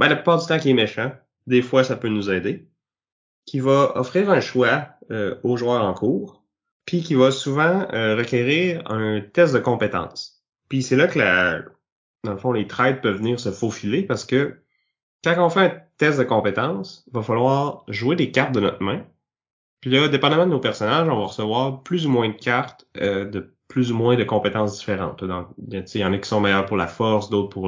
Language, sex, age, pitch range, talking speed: French, male, 30-49, 100-135 Hz, 215 wpm